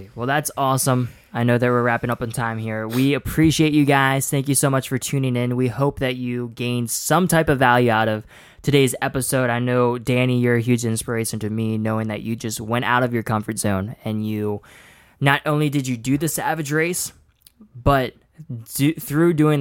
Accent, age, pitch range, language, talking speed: American, 20-39, 115-140 Hz, English, 210 wpm